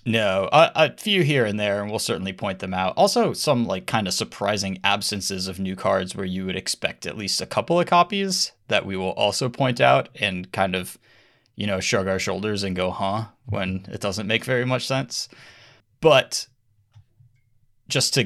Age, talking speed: 20-39, 195 wpm